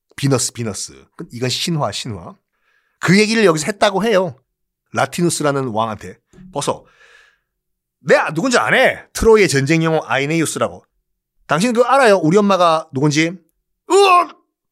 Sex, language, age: male, Korean, 40-59